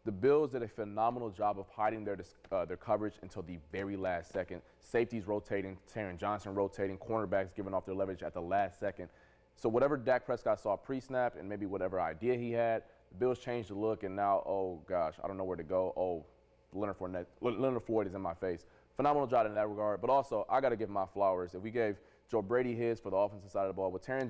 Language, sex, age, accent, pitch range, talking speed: English, male, 20-39, American, 95-115 Hz, 235 wpm